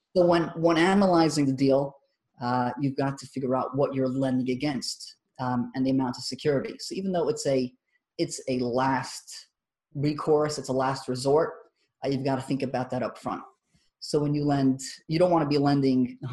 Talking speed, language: 200 wpm, English